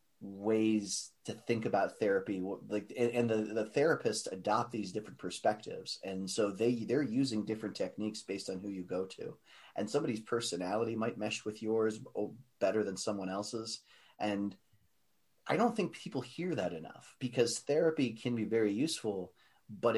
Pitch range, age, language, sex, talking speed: 100-120 Hz, 30-49, English, male, 160 wpm